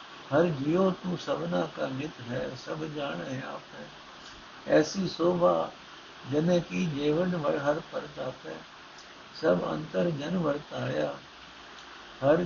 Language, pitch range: Punjabi, 140-175 Hz